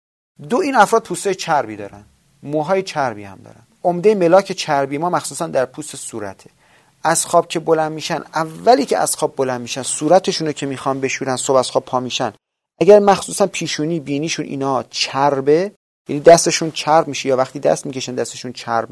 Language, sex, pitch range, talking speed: Persian, male, 130-195 Hz, 175 wpm